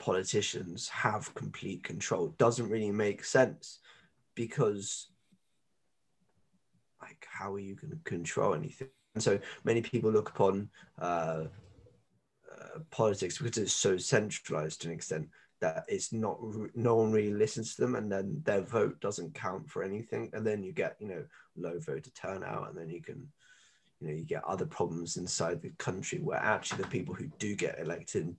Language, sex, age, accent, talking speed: English, male, 20-39, British, 170 wpm